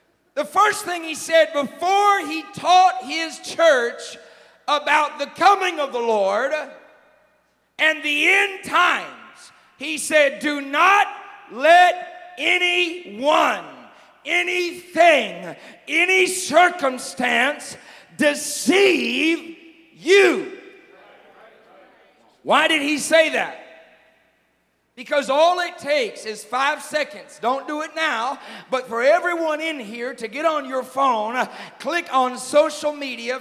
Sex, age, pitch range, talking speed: male, 40-59, 270-345 Hz, 110 wpm